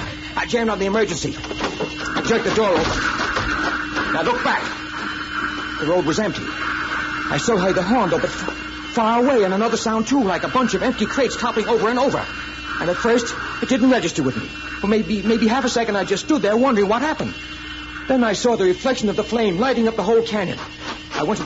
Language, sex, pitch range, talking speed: English, male, 175-235 Hz, 220 wpm